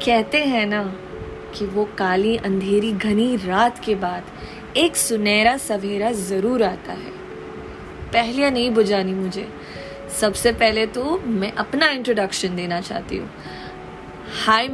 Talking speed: 125 wpm